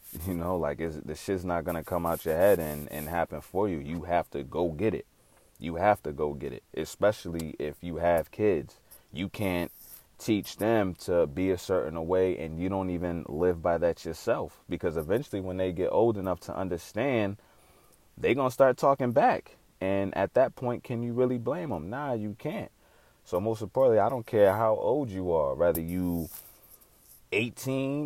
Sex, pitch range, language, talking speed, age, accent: male, 85-105 Hz, English, 195 wpm, 30-49, American